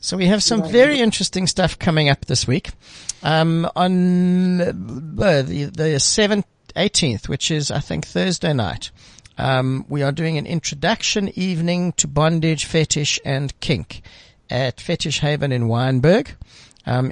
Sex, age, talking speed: male, 60-79, 140 wpm